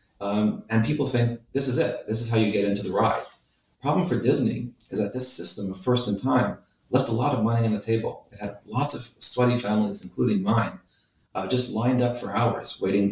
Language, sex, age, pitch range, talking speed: English, male, 40-59, 100-120 Hz, 220 wpm